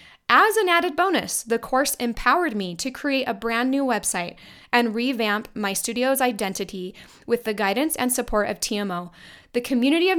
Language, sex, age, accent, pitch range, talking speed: English, female, 20-39, American, 205-260 Hz, 170 wpm